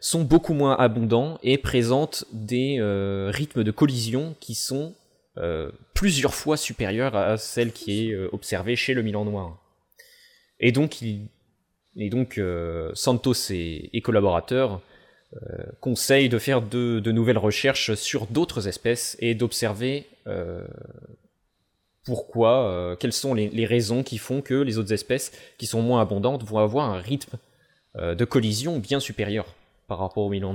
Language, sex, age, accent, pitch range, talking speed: French, male, 20-39, French, 100-130 Hz, 160 wpm